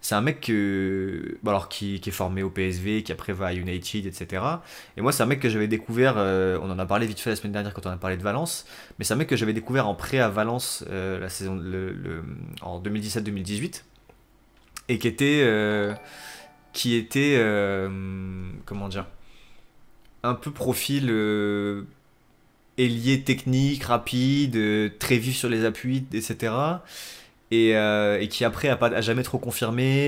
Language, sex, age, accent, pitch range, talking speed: French, male, 20-39, French, 105-125 Hz, 180 wpm